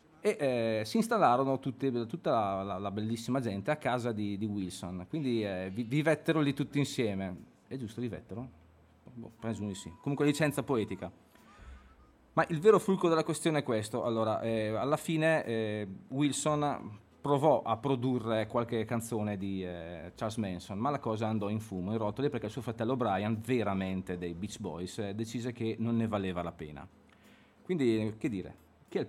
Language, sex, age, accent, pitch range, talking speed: Italian, male, 30-49, native, 105-140 Hz, 180 wpm